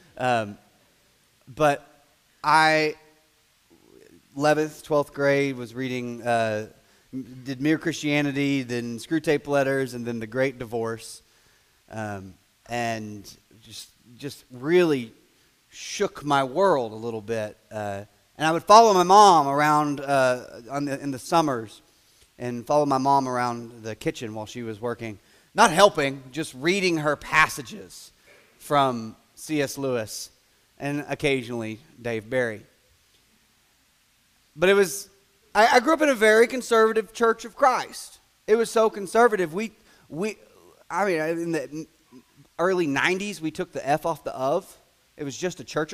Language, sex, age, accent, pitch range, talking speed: English, male, 30-49, American, 125-195 Hz, 140 wpm